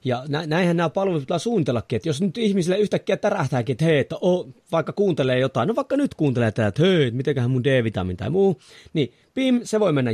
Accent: native